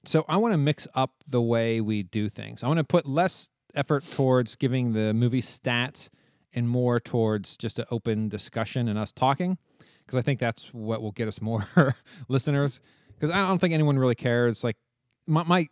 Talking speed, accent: 200 wpm, American